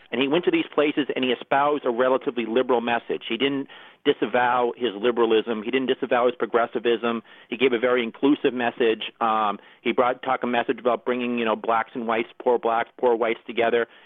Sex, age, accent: male, 40-59, American